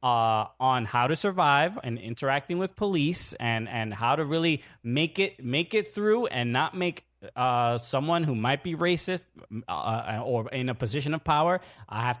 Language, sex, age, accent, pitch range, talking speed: English, male, 20-39, American, 125-175 Hz, 180 wpm